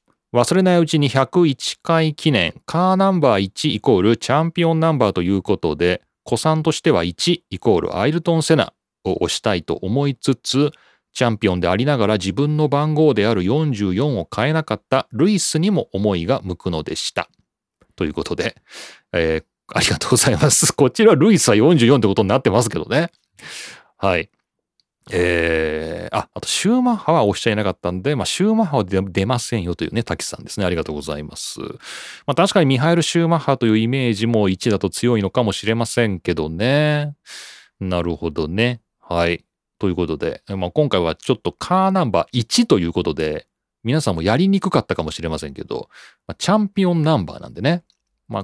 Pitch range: 95-155 Hz